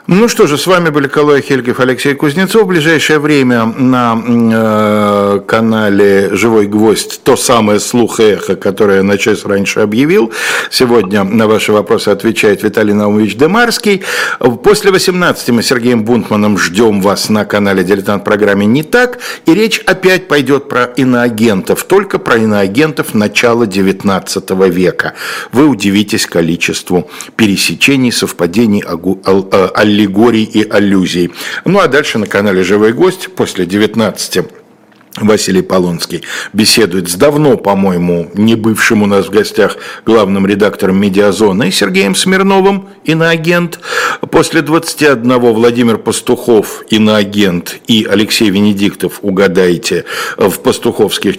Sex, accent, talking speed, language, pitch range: male, native, 125 wpm, Russian, 100-145 Hz